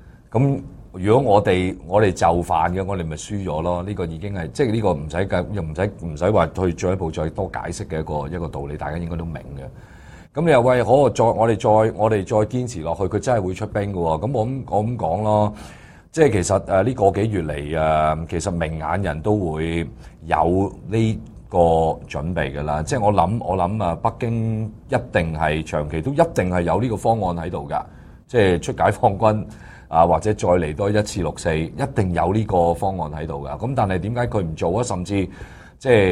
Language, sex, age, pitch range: English, male, 30-49, 80-100 Hz